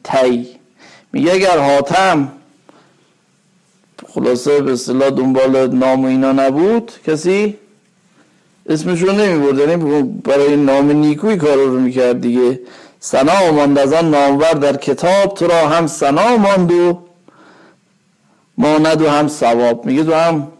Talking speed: 120 wpm